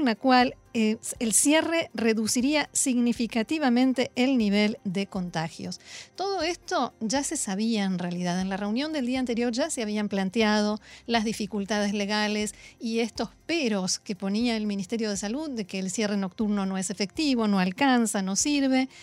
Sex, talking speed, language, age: female, 165 wpm, Spanish, 40-59